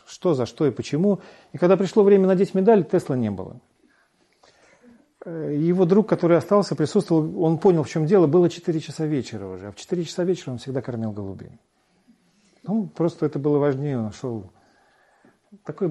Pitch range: 115-165 Hz